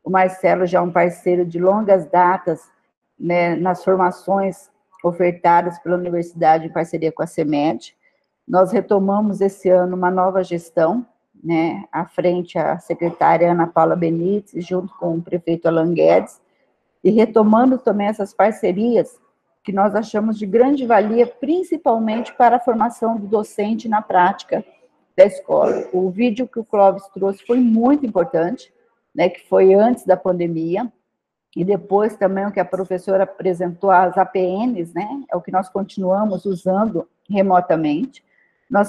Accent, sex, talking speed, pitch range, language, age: Brazilian, female, 145 wpm, 180-215 Hz, Portuguese, 50-69